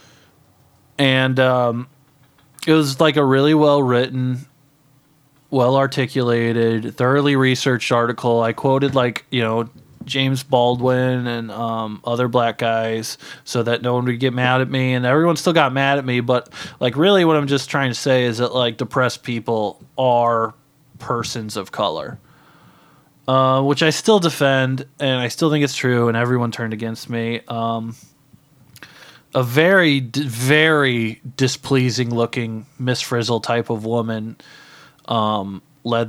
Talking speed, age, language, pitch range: 145 wpm, 20-39, English, 115-140 Hz